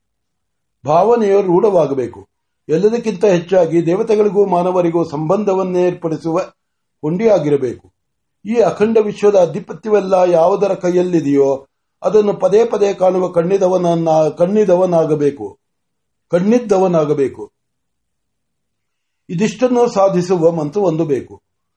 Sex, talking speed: male, 35 wpm